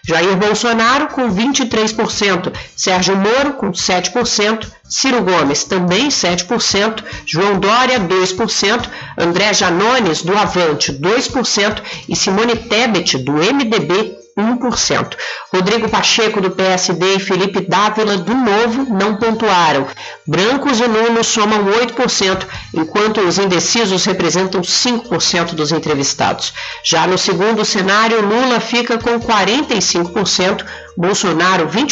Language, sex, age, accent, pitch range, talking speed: Portuguese, female, 50-69, Brazilian, 185-225 Hz, 110 wpm